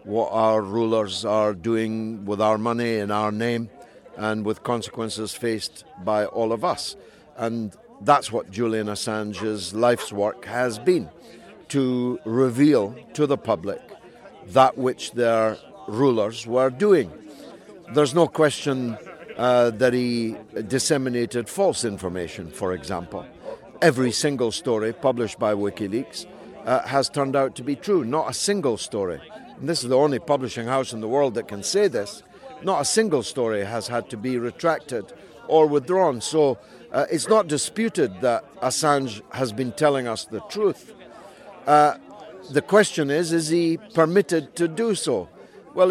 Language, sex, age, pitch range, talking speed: English, male, 60-79, 110-150 Hz, 150 wpm